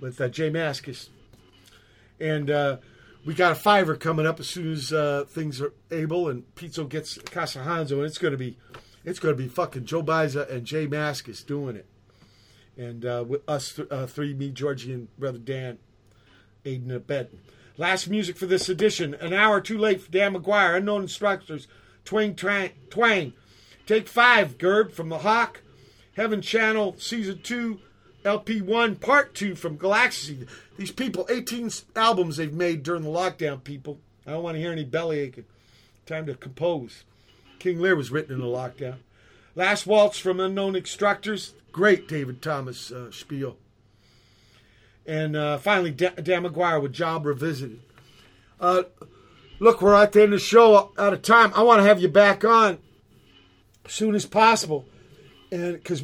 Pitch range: 125-195 Hz